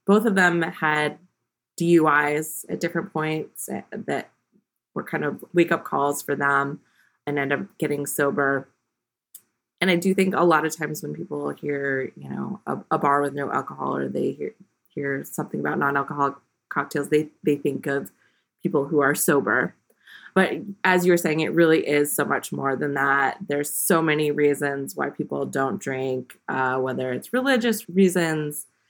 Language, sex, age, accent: English, female, 20-39, American